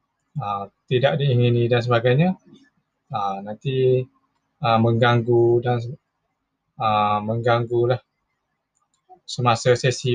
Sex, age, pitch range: male, 20-39, 115-145 Hz